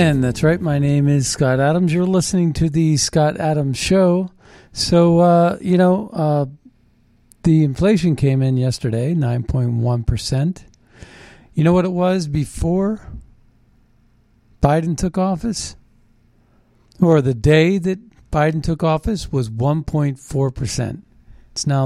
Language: English